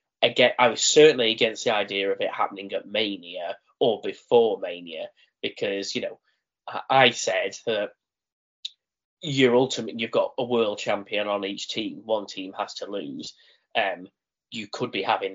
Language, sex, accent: English, male, British